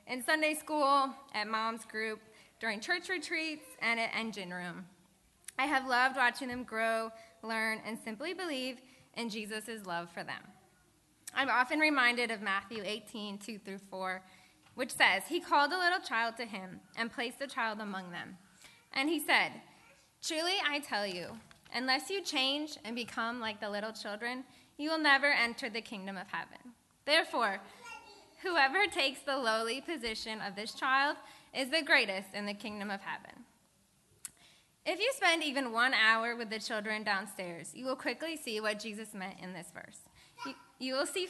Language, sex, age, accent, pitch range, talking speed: English, female, 10-29, American, 215-280 Hz, 170 wpm